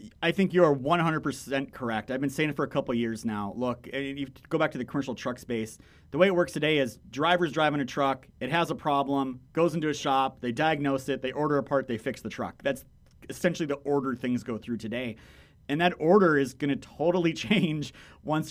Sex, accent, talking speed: male, American, 235 wpm